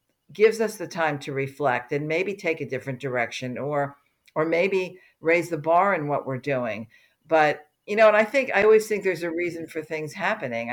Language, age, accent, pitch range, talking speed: English, 50-69, American, 150-205 Hz, 205 wpm